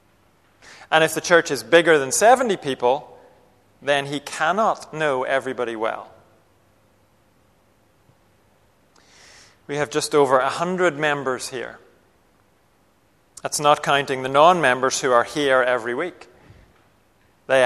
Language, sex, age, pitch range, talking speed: English, male, 30-49, 105-150 Hz, 110 wpm